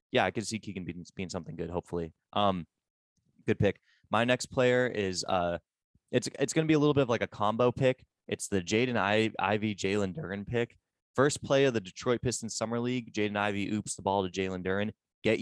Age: 20-39